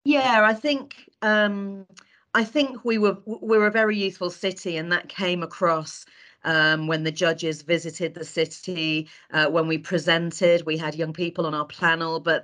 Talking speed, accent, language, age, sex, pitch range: 180 wpm, British, English, 40-59, female, 155-180 Hz